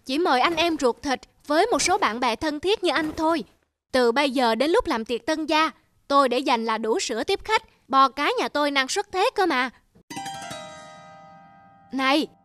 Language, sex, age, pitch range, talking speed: Vietnamese, female, 20-39, 240-355 Hz, 205 wpm